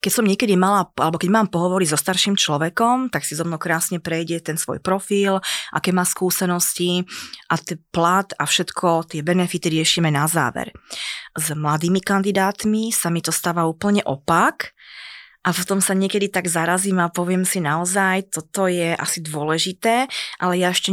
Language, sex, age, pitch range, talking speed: Slovak, female, 20-39, 165-185 Hz, 170 wpm